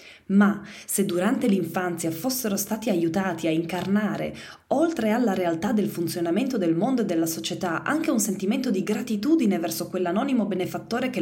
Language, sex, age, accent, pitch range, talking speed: Italian, female, 20-39, native, 165-210 Hz, 150 wpm